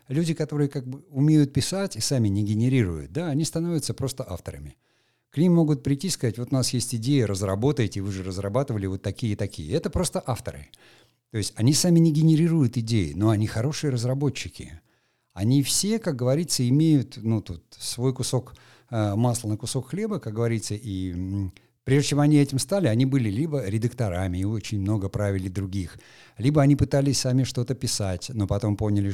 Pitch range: 100-140 Hz